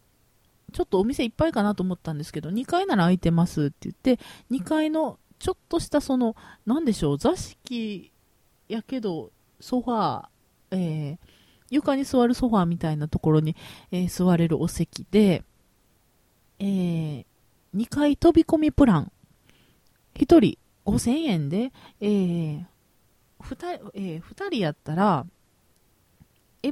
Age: 40-59